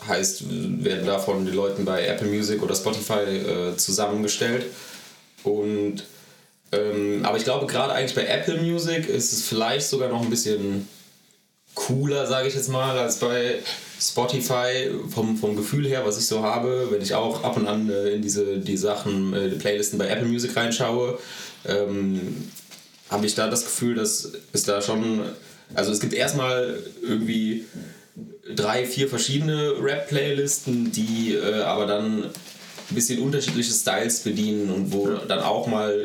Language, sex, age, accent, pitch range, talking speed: German, male, 20-39, German, 105-125 Hz, 160 wpm